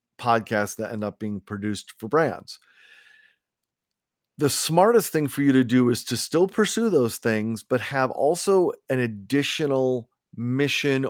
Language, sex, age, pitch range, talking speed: English, male, 40-59, 115-145 Hz, 145 wpm